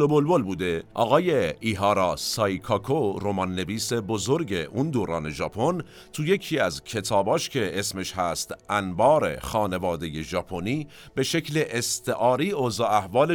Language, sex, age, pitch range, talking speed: Persian, male, 50-69, 95-135 Hz, 115 wpm